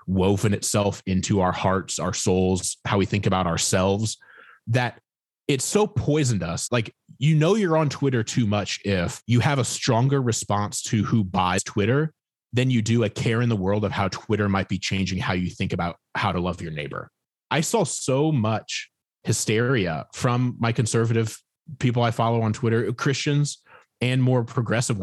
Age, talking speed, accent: 30-49, 180 wpm, American